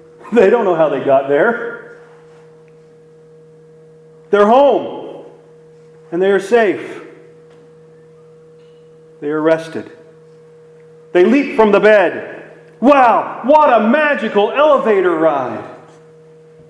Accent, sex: American, male